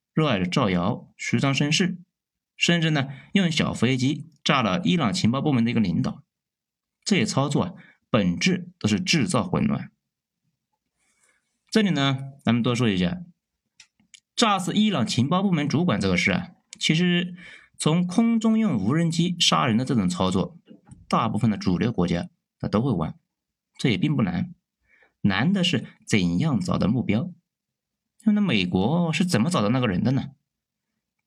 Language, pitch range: Chinese, 125-200 Hz